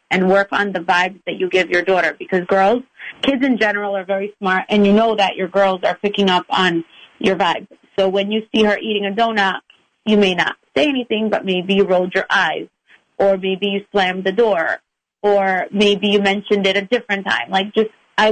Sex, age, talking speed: female, 30-49, 215 wpm